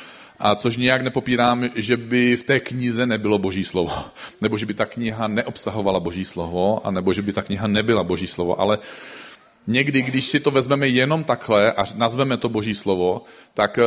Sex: male